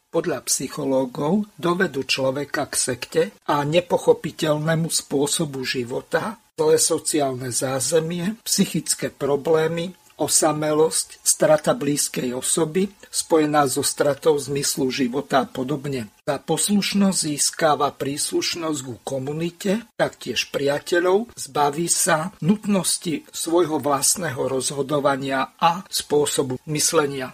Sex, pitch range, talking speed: male, 140-180 Hz, 95 wpm